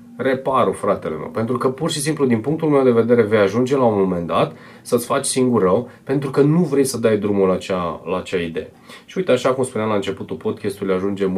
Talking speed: 220 wpm